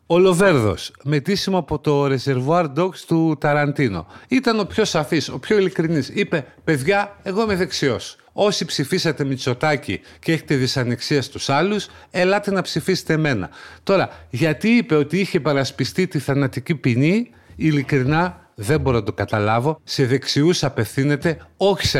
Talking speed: 145 wpm